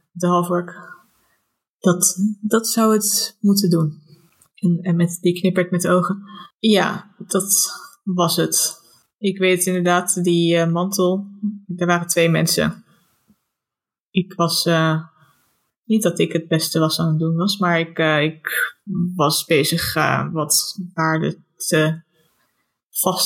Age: 20-39